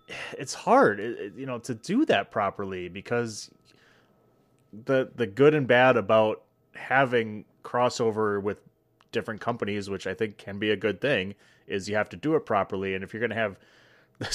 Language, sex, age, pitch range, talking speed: English, male, 30-49, 95-110 Hz, 170 wpm